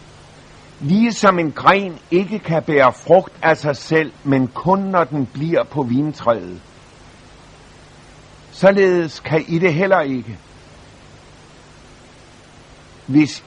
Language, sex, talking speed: Danish, male, 105 wpm